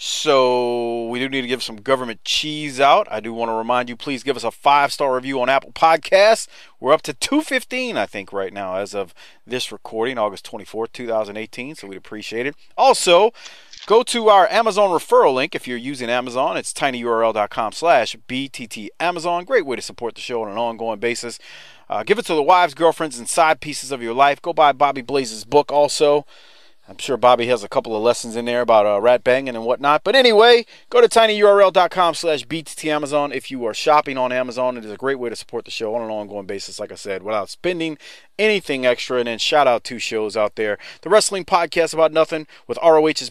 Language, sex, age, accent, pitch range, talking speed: English, male, 40-59, American, 115-160 Hz, 210 wpm